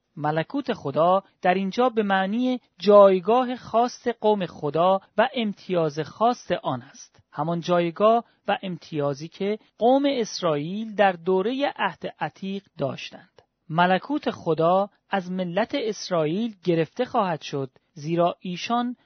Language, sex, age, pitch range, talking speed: Persian, male, 40-59, 165-225 Hz, 115 wpm